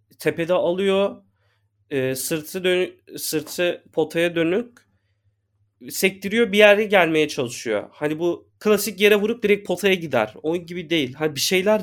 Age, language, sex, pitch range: 30-49, Turkish, male, 120-190 Hz